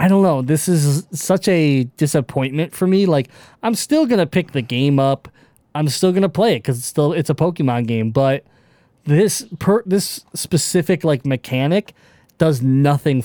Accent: American